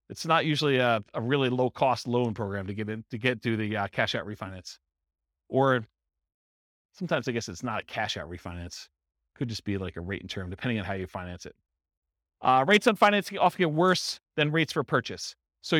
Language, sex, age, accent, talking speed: English, male, 40-59, American, 210 wpm